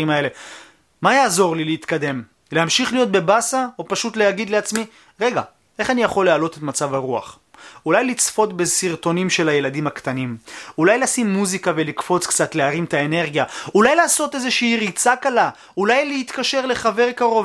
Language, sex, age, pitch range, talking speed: Hebrew, male, 30-49, 165-230 Hz, 150 wpm